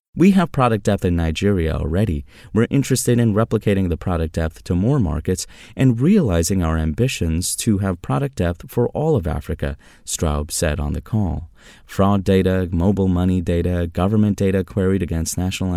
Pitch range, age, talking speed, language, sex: 80-110 Hz, 30-49, 170 wpm, English, male